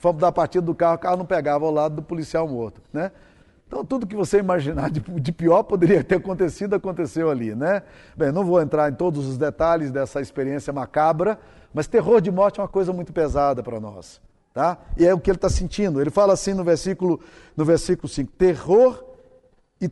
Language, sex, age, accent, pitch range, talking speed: Portuguese, male, 50-69, Brazilian, 155-195 Hz, 205 wpm